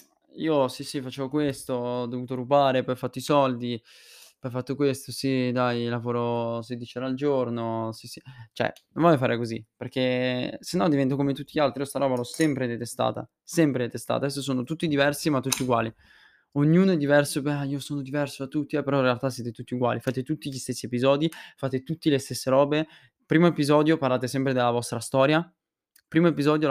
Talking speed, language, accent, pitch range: 195 wpm, Italian, native, 125-155 Hz